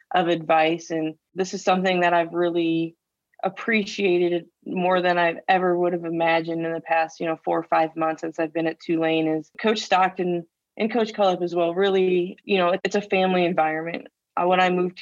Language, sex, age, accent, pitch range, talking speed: English, female, 20-39, American, 165-185 Hz, 195 wpm